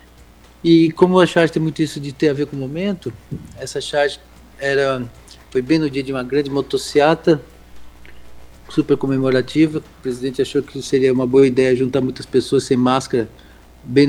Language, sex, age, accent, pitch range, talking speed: Portuguese, male, 50-69, Brazilian, 125-150 Hz, 175 wpm